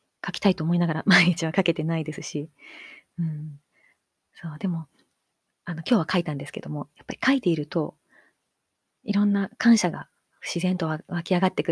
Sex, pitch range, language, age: female, 155-195 Hz, Japanese, 30-49